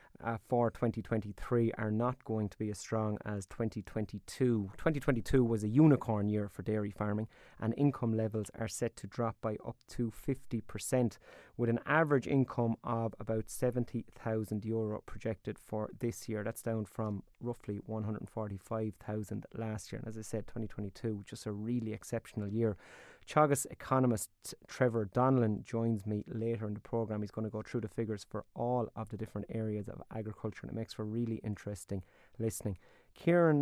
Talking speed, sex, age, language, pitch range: 165 wpm, male, 30-49, English, 105-125 Hz